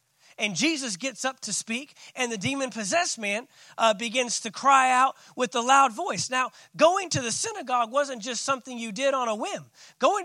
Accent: American